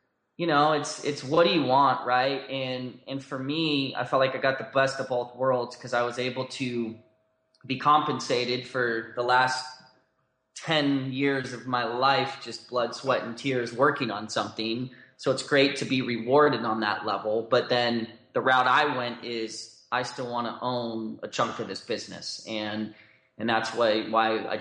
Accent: American